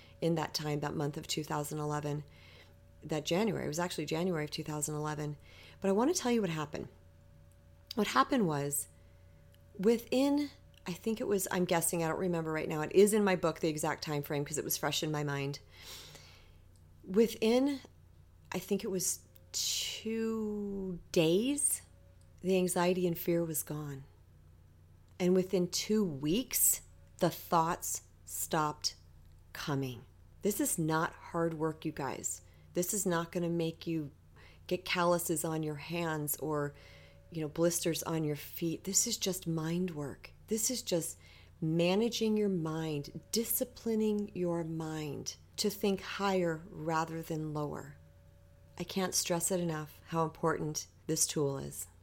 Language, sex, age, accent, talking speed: English, female, 40-59, American, 150 wpm